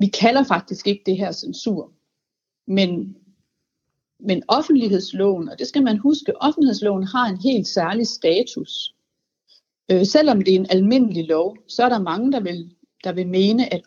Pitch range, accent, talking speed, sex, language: 185-245 Hz, native, 165 wpm, female, Danish